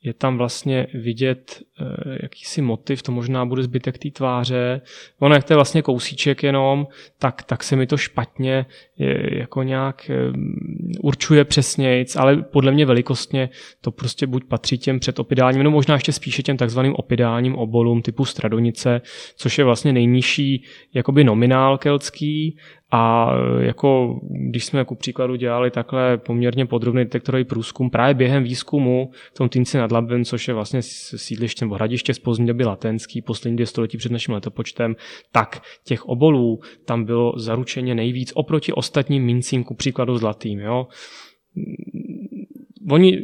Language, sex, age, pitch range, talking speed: Czech, male, 20-39, 120-140 Hz, 150 wpm